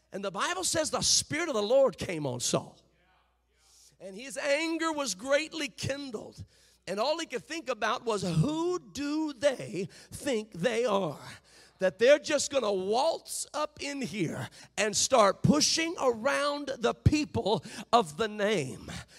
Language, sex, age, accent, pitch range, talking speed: English, male, 50-69, American, 230-310 Hz, 155 wpm